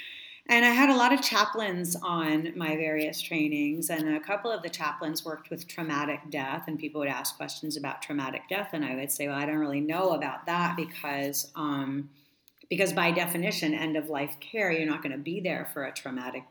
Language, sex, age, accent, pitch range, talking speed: English, female, 40-59, American, 150-170 Hz, 205 wpm